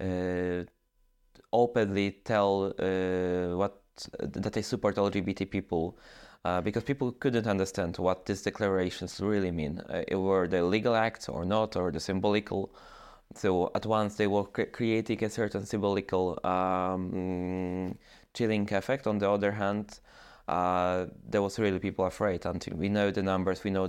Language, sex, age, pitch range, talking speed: English, male, 20-39, 90-105 Hz, 155 wpm